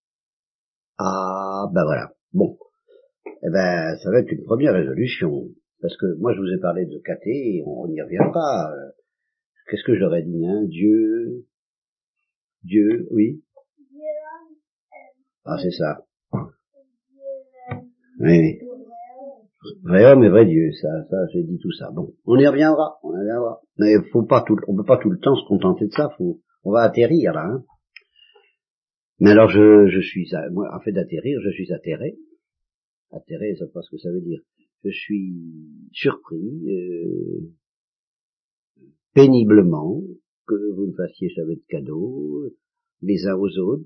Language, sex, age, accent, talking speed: French, male, 50-69, French, 155 wpm